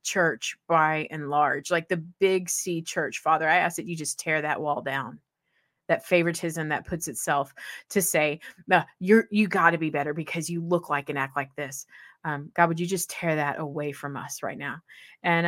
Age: 30-49